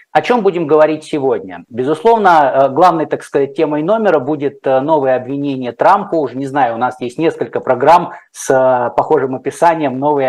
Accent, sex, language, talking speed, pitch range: native, male, Russian, 165 wpm, 130-160 Hz